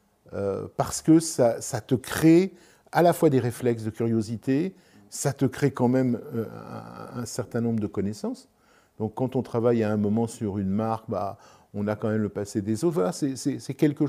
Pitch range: 105-135 Hz